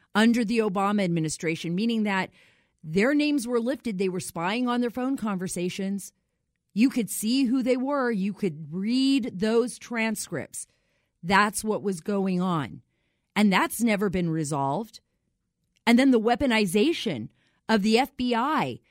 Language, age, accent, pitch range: English, 40-59, American, 200-265 Hz